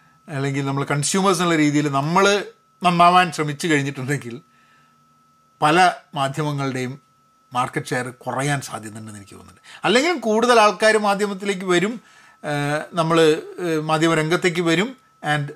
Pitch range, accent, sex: 135-215 Hz, native, male